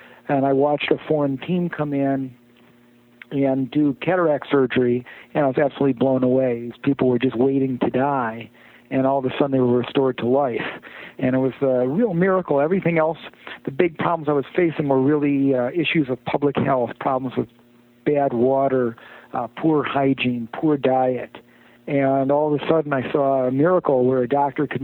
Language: English